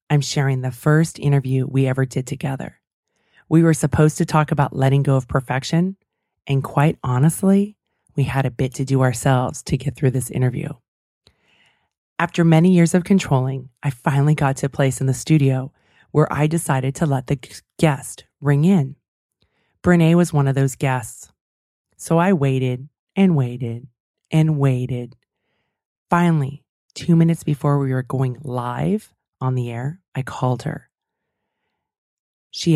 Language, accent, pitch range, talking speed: English, American, 130-160 Hz, 155 wpm